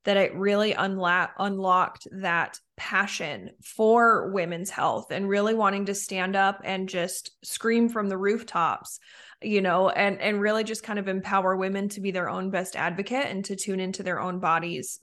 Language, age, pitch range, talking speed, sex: English, 20-39, 185-215 Hz, 180 wpm, female